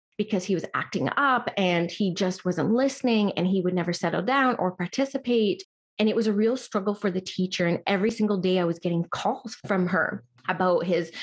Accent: American